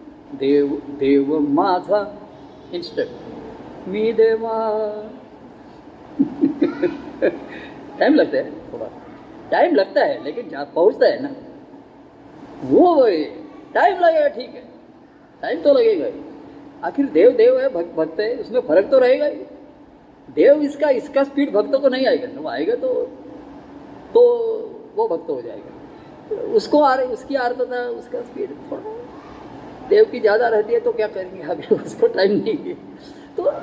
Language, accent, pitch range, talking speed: Marathi, native, 225-340 Hz, 90 wpm